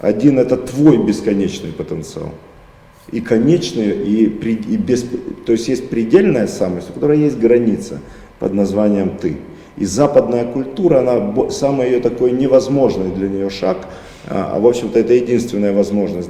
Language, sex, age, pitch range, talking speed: Russian, male, 40-59, 95-125 Hz, 155 wpm